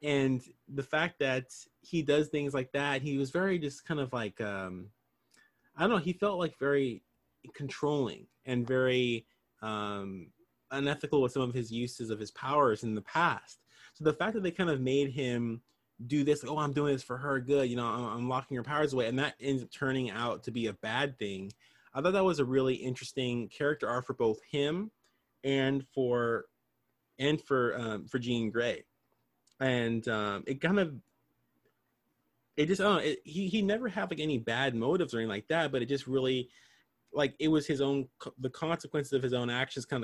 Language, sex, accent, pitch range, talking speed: English, male, American, 115-145 Hz, 205 wpm